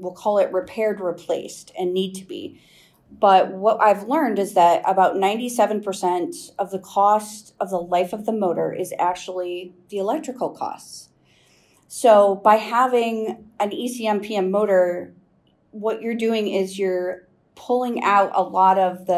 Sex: female